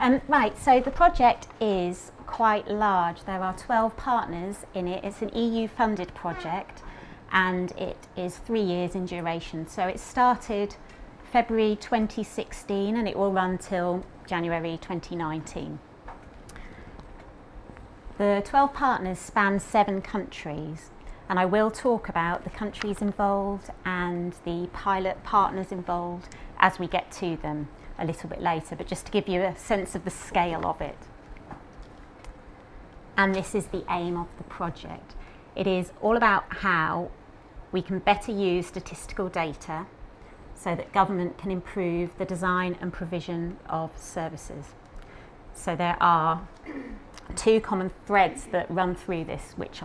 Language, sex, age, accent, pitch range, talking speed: English, female, 30-49, British, 170-205 Hz, 140 wpm